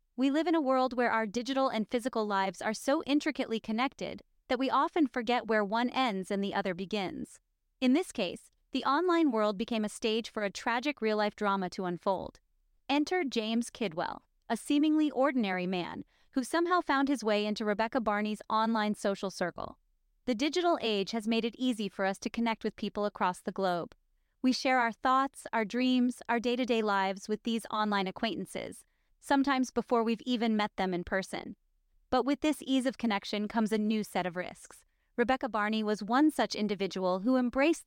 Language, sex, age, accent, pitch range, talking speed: English, female, 30-49, American, 205-260 Hz, 185 wpm